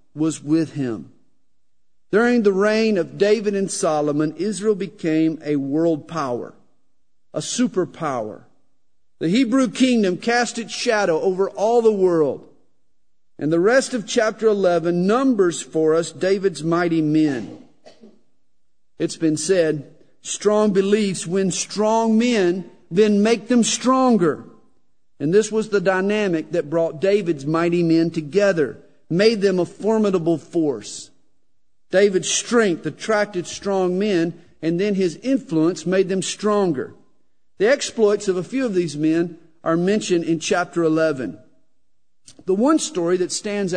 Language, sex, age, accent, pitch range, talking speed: English, male, 50-69, American, 160-210 Hz, 135 wpm